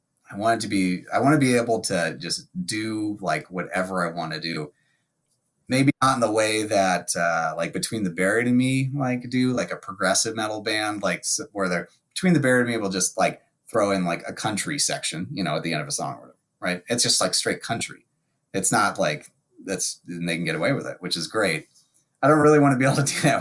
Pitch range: 90-125 Hz